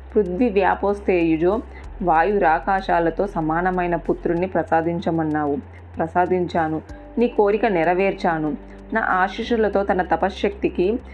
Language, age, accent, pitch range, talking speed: Telugu, 30-49, native, 160-195 Hz, 75 wpm